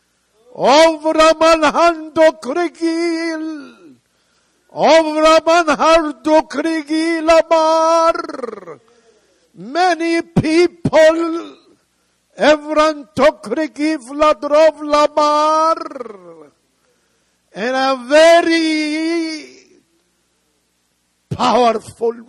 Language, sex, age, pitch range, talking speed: English, male, 60-79, 200-315 Hz, 50 wpm